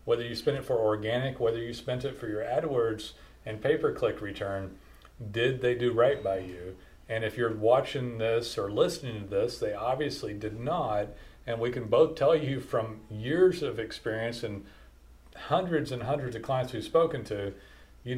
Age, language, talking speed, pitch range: 40-59, English, 180 wpm, 110-140 Hz